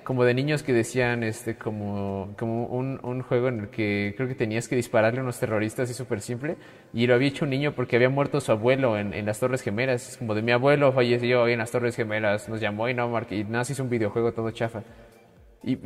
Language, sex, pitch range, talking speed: Spanish, male, 115-150 Hz, 235 wpm